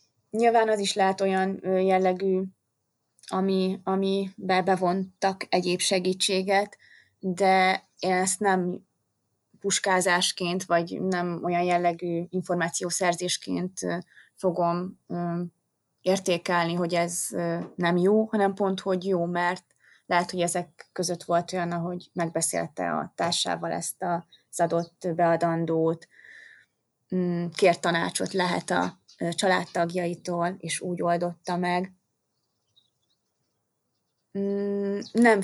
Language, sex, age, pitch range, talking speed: Hungarian, female, 20-39, 175-195 Hz, 95 wpm